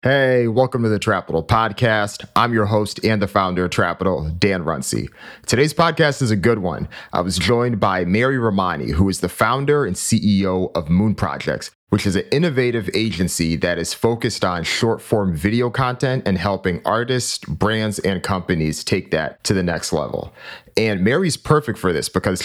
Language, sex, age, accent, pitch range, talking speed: English, male, 30-49, American, 95-120 Hz, 180 wpm